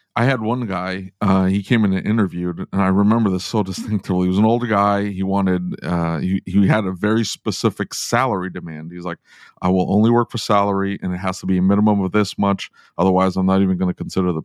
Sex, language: male, English